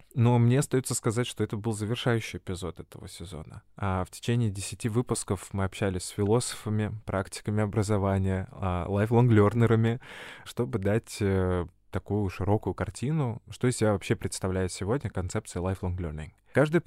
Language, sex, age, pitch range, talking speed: Russian, male, 20-39, 95-115 Hz, 130 wpm